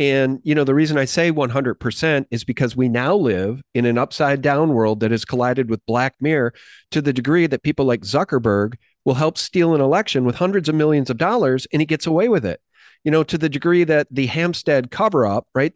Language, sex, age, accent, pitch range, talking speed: English, male, 40-59, American, 135-185 Hz, 230 wpm